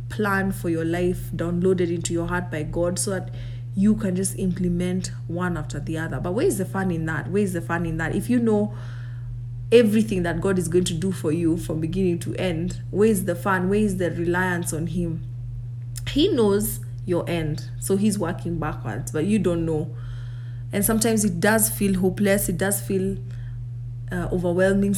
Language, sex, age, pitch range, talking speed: English, female, 30-49, 120-185 Hz, 195 wpm